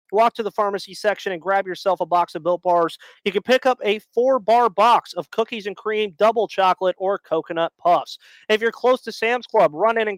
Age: 30-49